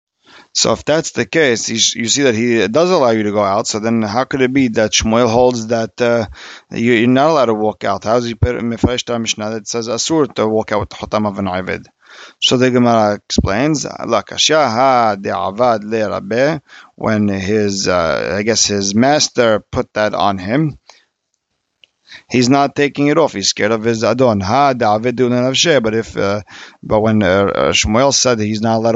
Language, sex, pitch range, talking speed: English, male, 105-125 Hz, 195 wpm